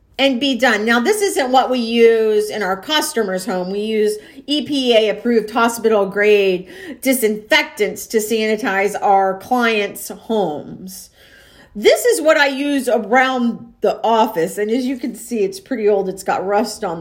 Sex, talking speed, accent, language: female, 160 wpm, American, English